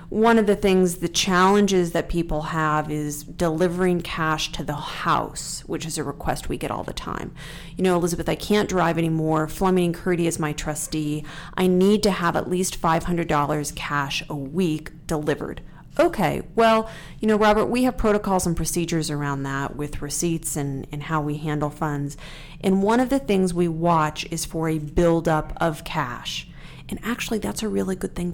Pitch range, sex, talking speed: 155-185 Hz, female, 185 wpm